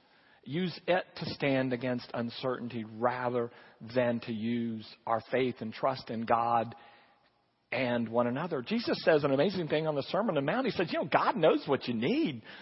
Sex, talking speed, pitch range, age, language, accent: male, 185 wpm, 130-185 Hz, 40-59, English, American